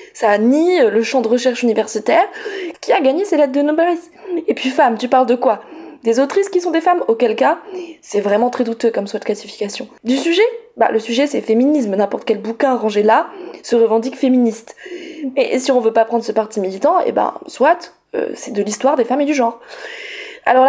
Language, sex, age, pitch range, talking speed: French, female, 20-39, 235-350 Hz, 215 wpm